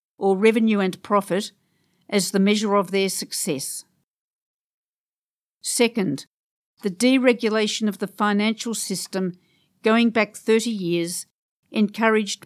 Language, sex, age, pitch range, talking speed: English, female, 50-69, 185-225 Hz, 105 wpm